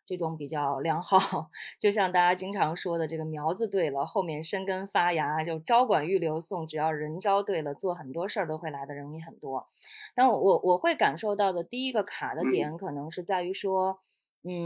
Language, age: Chinese, 20-39